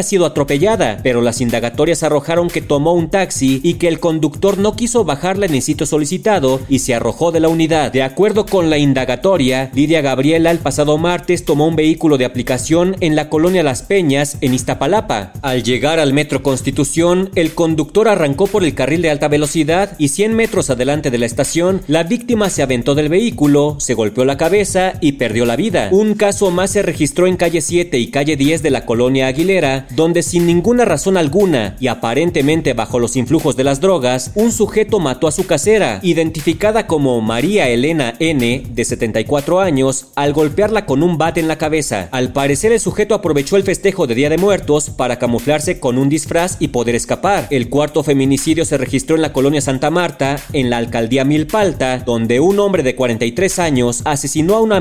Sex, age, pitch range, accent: male, 40-59, 135-180 Hz, Mexican